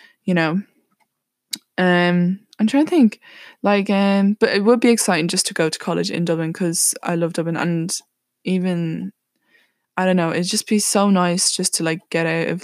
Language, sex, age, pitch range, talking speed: English, female, 10-29, 165-200 Hz, 195 wpm